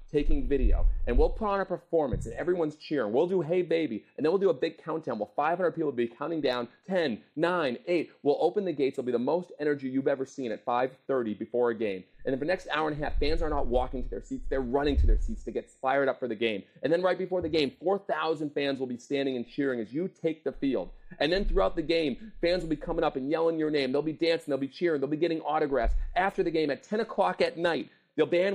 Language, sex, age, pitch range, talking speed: English, male, 30-49, 140-175 Hz, 270 wpm